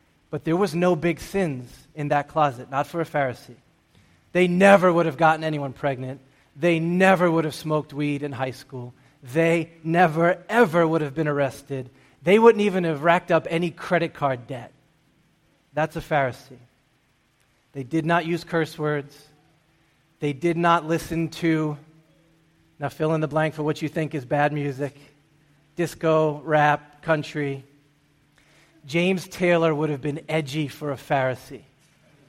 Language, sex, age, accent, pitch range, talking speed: English, male, 30-49, American, 140-170 Hz, 155 wpm